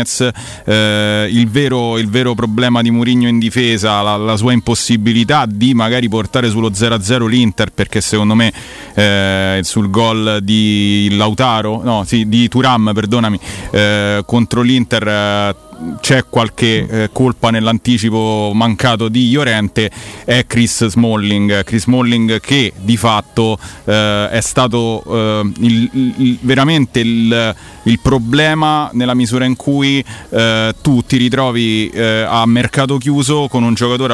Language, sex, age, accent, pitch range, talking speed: Italian, male, 30-49, native, 105-125 Hz, 135 wpm